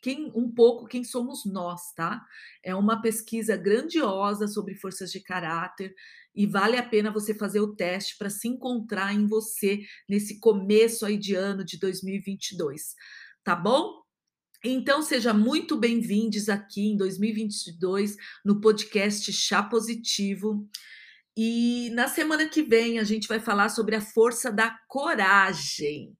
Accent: Brazilian